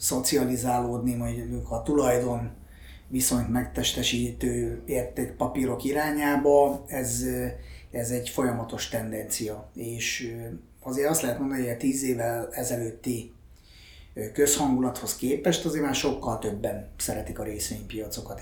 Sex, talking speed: male, 110 wpm